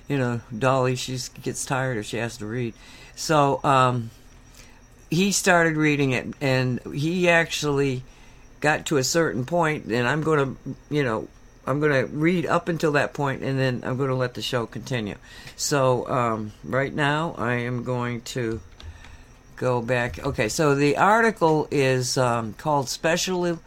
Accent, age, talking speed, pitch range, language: American, 60-79, 165 wpm, 120-150 Hz, English